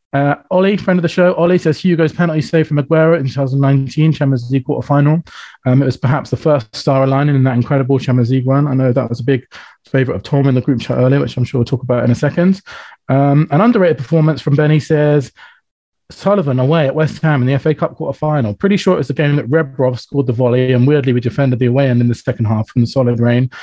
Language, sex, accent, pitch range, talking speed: English, male, British, 130-160 Hz, 250 wpm